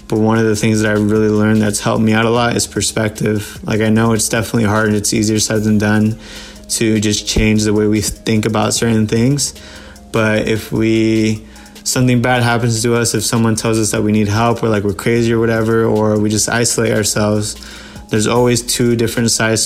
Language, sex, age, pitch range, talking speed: English, male, 20-39, 105-115 Hz, 215 wpm